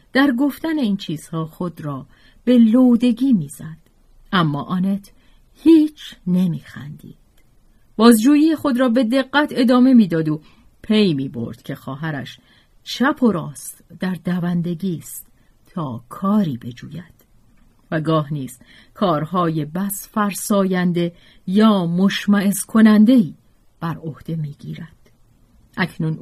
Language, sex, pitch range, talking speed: Persian, female, 160-230 Hz, 110 wpm